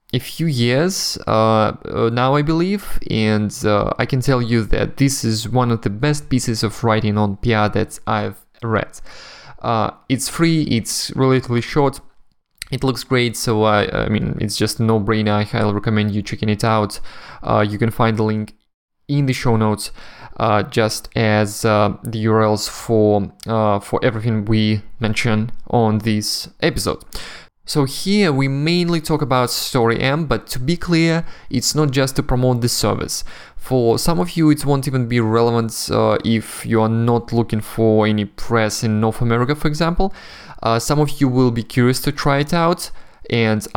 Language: English